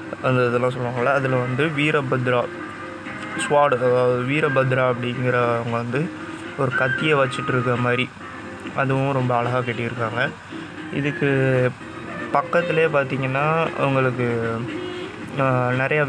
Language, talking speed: Tamil, 90 wpm